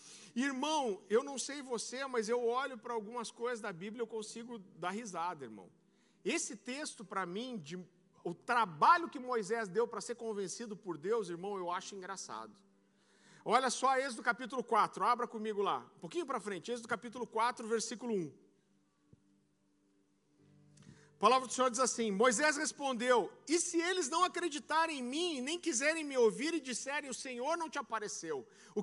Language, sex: Portuguese, male